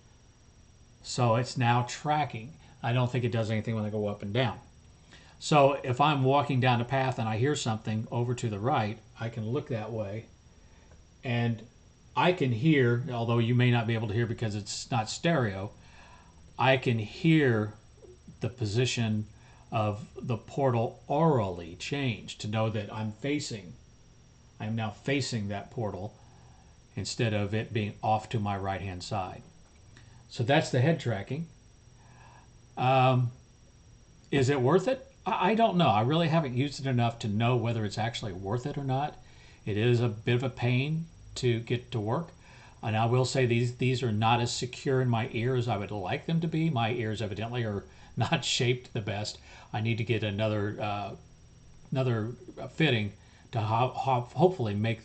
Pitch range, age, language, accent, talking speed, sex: 110-130 Hz, 40-59, English, American, 175 wpm, male